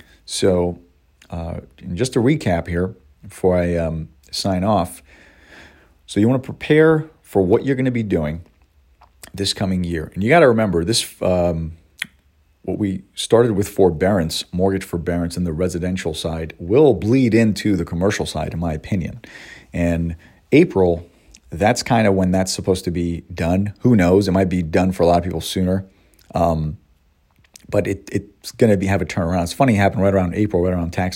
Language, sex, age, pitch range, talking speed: English, male, 40-59, 85-100 Hz, 185 wpm